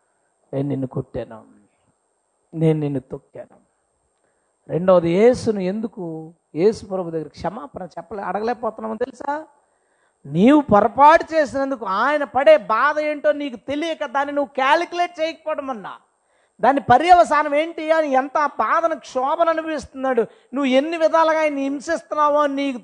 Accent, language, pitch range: native, Telugu, 170-280 Hz